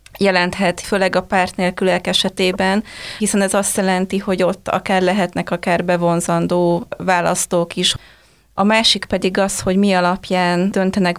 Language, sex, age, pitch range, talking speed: Hungarian, female, 20-39, 180-195 Hz, 140 wpm